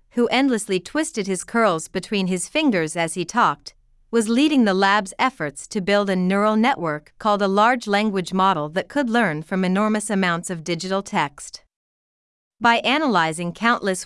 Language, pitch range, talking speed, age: Vietnamese, 180-230 Hz, 160 wpm, 40-59